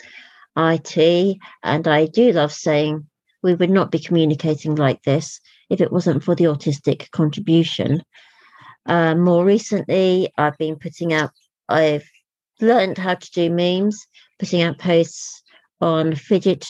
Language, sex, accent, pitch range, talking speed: English, female, British, 160-205 Hz, 135 wpm